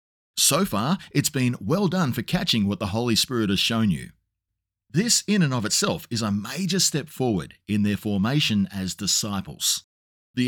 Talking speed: 180 wpm